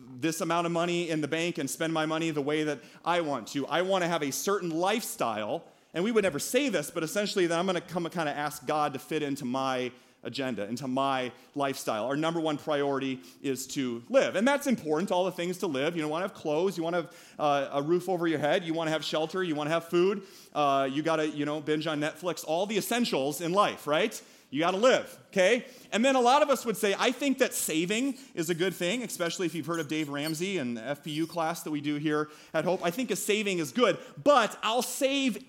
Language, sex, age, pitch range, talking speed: English, male, 30-49, 150-195 Hz, 260 wpm